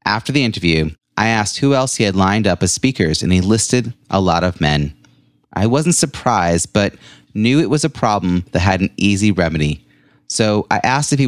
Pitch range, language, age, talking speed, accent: 90-125 Hz, English, 30-49, 205 wpm, American